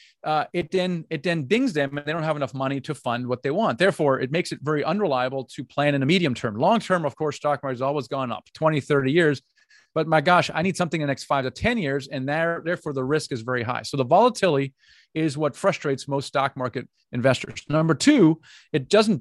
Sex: male